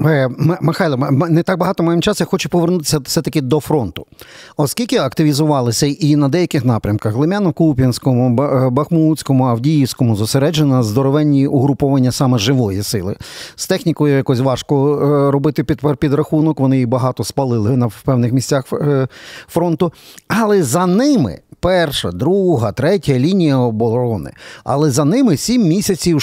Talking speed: 130 wpm